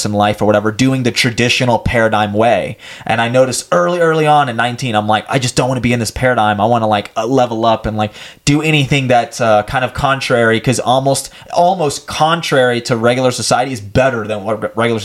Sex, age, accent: male, 20-39, American